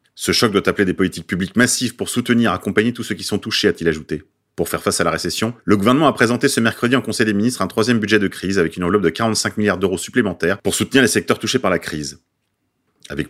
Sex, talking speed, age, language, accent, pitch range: male, 255 wpm, 30-49, French, French, 90-115 Hz